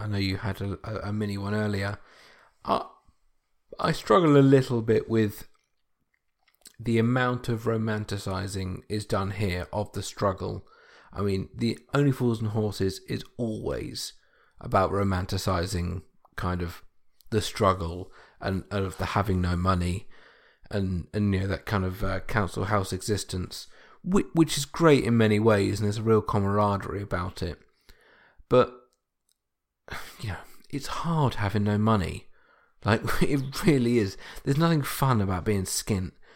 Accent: British